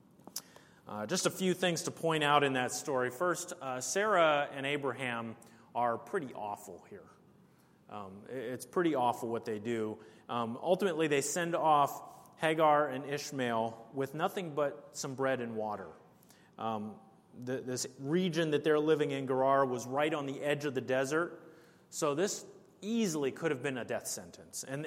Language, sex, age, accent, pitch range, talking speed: English, male, 30-49, American, 135-180 Hz, 170 wpm